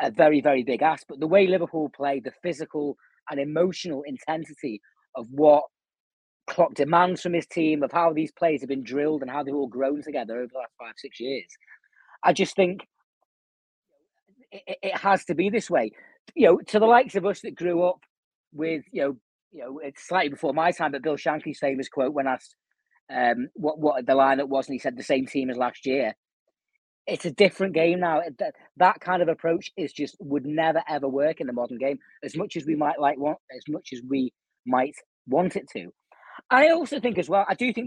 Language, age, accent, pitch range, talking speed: English, 30-49, British, 140-185 Hz, 215 wpm